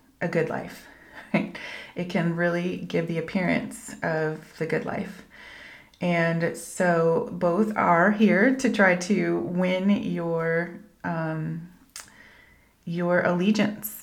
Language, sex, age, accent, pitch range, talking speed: English, female, 30-49, American, 170-210 Hz, 115 wpm